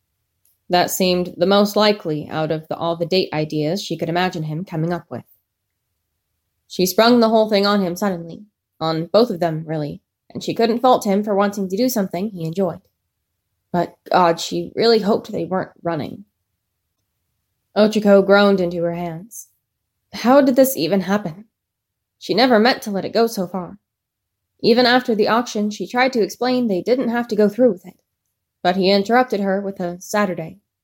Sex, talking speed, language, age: female, 180 wpm, English, 20-39